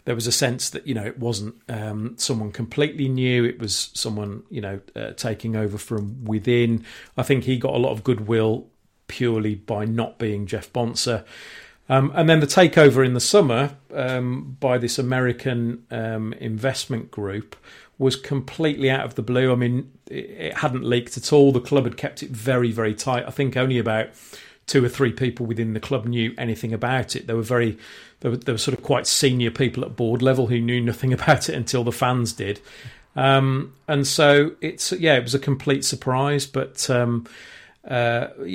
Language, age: English, 40-59